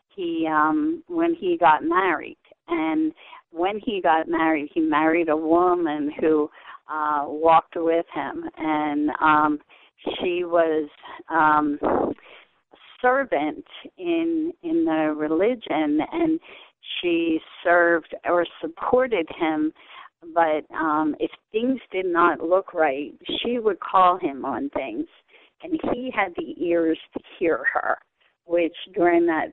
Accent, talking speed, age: American, 125 wpm, 40-59